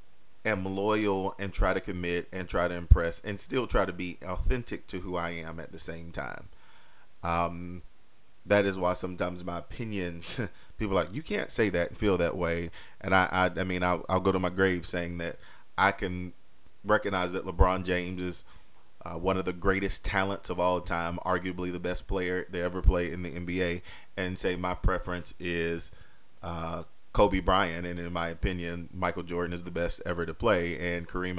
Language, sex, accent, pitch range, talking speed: English, male, American, 85-95 Hz, 195 wpm